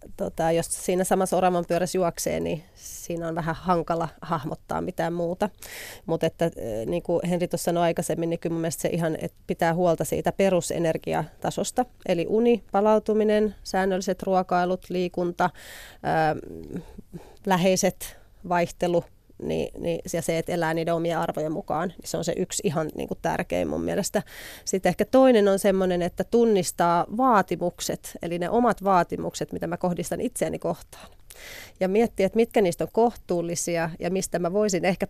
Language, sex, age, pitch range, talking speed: Finnish, female, 30-49, 170-195 Hz, 150 wpm